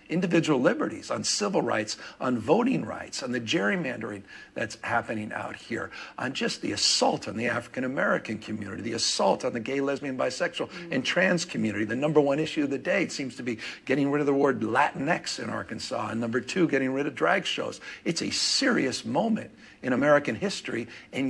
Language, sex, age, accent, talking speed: English, male, 60-79, American, 190 wpm